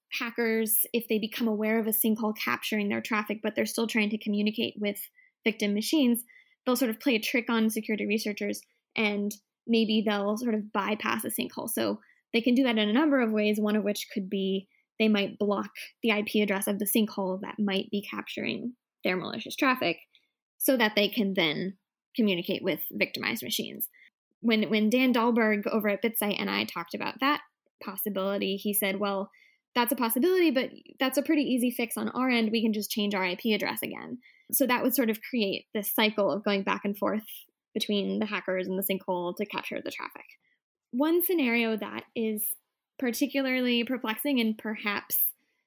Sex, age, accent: female, 10-29, American